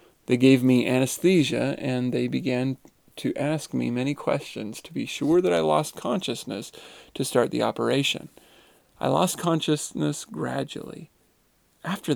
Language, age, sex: English, 40-59, male